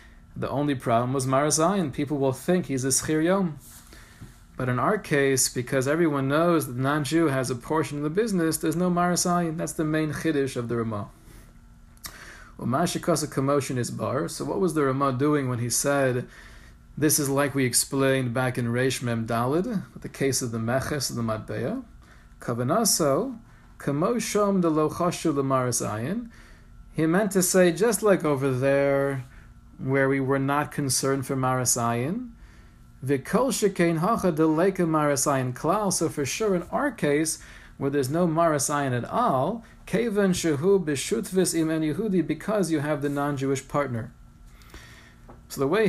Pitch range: 130-165 Hz